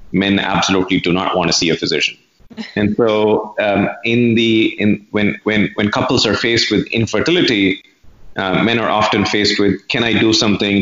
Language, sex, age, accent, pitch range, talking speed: English, male, 30-49, Indian, 95-110 Hz, 185 wpm